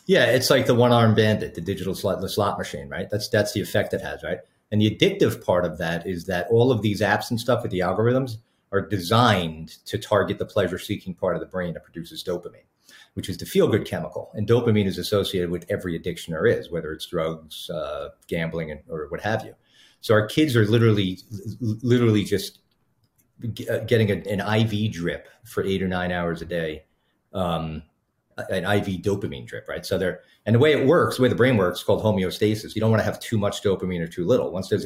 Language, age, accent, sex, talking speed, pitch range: English, 40-59, American, male, 215 wpm, 90-110 Hz